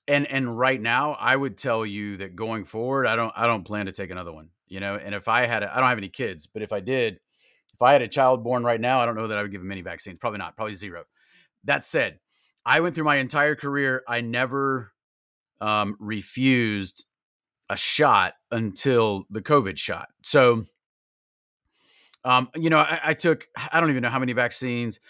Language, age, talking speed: English, 30-49, 215 wpm